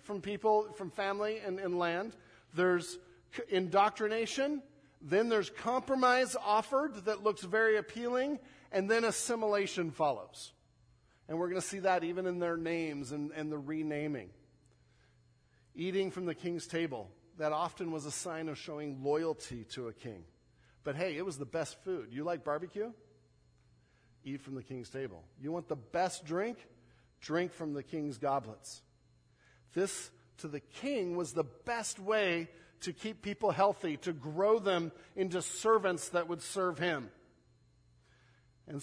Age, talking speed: 50-69, 150 wpm